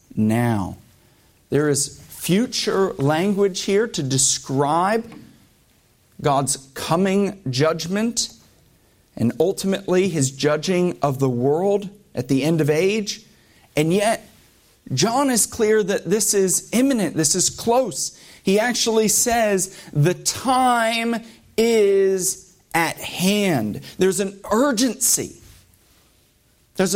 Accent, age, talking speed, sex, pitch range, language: American, 40-59, 105 wpm, male, 135-200 Hz, English